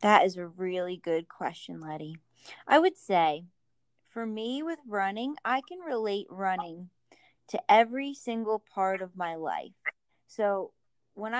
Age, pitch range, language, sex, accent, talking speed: 20-39, 180-220 Hz, English, female, American, 140 wpm